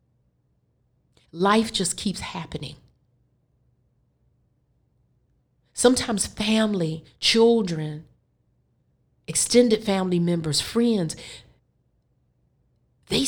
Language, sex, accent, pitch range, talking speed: English, female, American, 155-230 Hz, 55 wpm